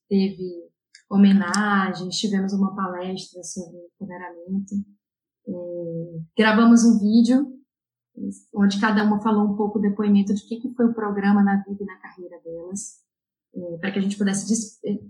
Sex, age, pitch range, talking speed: female, 20-39, 195-230 Hz, 150 wpm